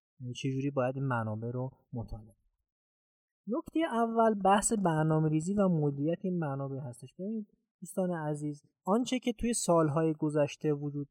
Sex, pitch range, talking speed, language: male, 135-180 Hz, 120 wpm, Persian